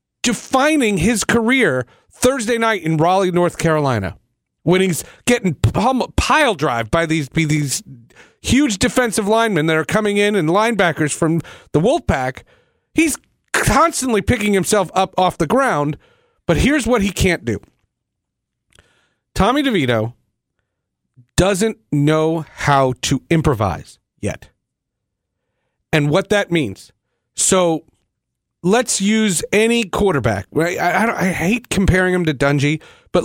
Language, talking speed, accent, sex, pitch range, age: English, 125 wpm, American, male, 145-225 Hz, 40-59